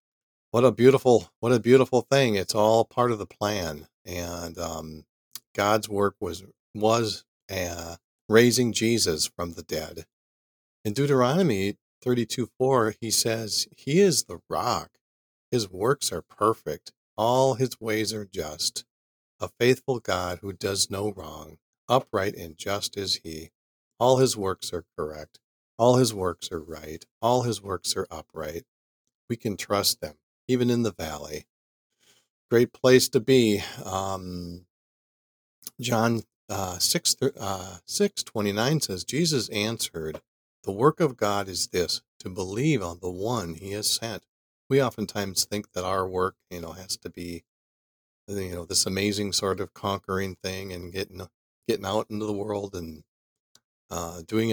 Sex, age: male, 40-59